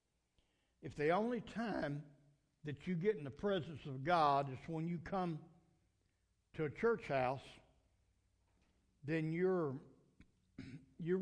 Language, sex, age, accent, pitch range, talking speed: English, male, 60-79, American, 125-175 Hz, 125 wpm